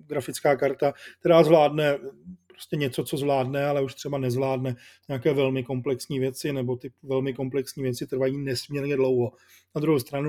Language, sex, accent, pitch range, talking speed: Czech, male, native, 130-150 Hz, 155 wpm